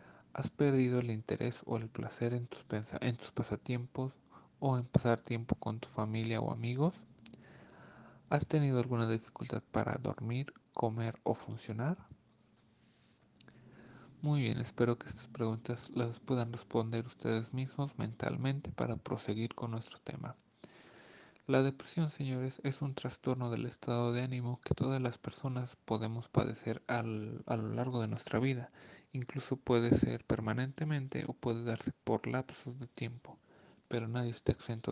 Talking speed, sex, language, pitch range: 145 wpm, male, English, 115-130 Hz